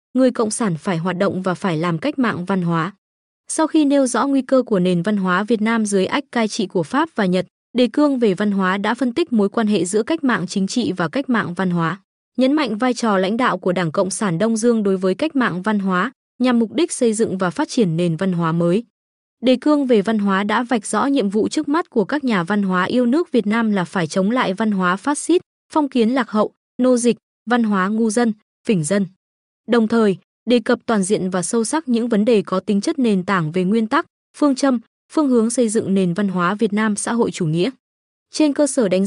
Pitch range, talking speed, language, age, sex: 190-250 Hz, 250 wpm, Vietnamese, 20-39, female